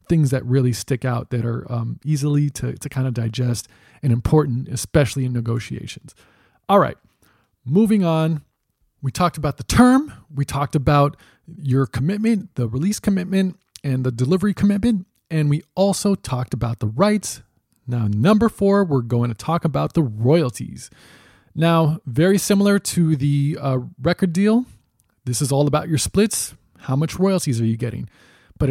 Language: English